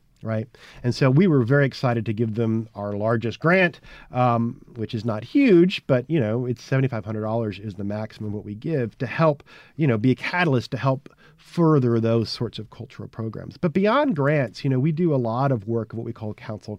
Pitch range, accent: 115-140 Hz, American